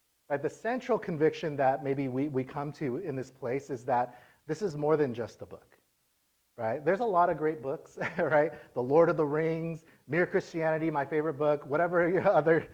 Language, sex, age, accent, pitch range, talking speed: English, male, 30-49, American, 130-165 Hz, 200 wpm